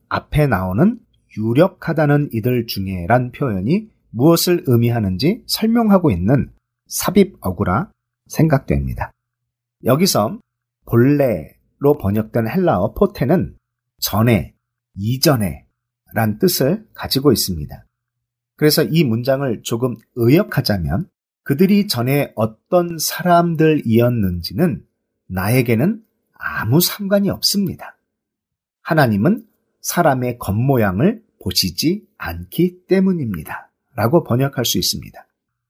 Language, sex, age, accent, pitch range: Korean, male, 40-59, native, 110-170 Hz